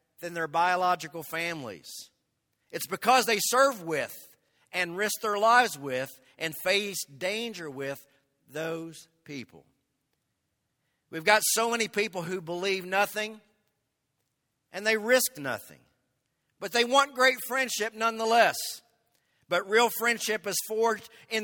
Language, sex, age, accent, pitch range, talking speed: English, male, 50-69, American, 145-210 Hz, 125 wpm